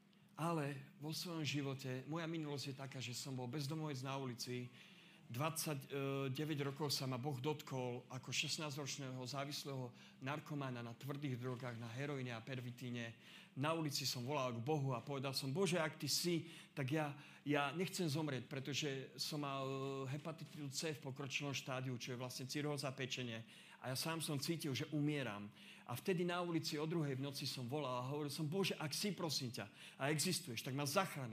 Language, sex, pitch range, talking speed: Slovak, male, 135-160 Hz, 175 wpm